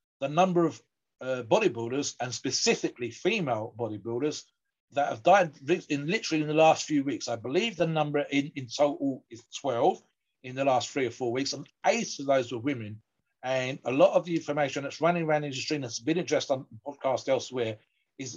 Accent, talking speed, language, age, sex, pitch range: British, 195 wpm, English, 50-69, male, 130-165 Hz